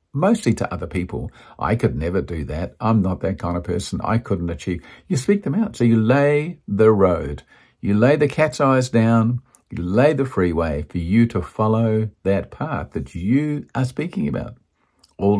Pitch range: 90-135 Hz